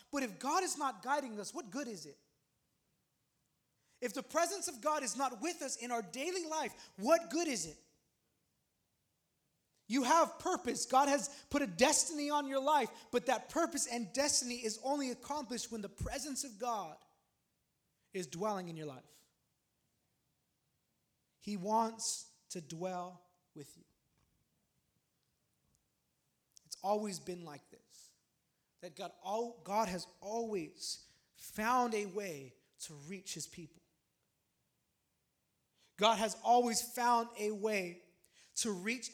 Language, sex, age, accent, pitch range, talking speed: English, male, 20-39, American, 195-260 Hz, 135 wpm